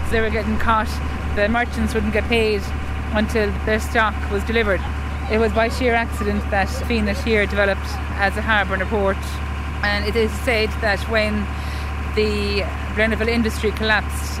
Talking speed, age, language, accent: 165 wpm, 30-49, English, Irish